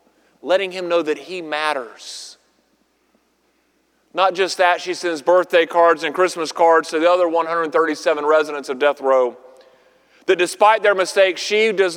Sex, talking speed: male, 150 wpm